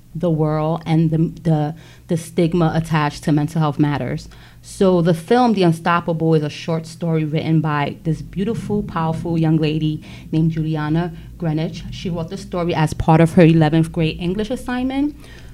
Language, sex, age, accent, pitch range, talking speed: English, female, 30-49, American, 155-185 Hz, 165 wpm